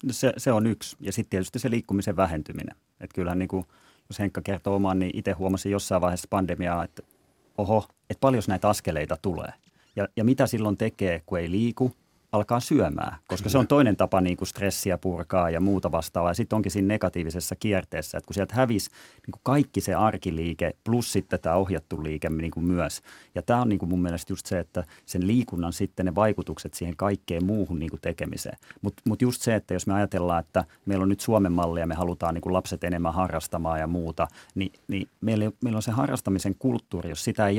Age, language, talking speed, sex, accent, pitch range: 30-49, Finnish, 205 wpm, male, native, 90-110 Hz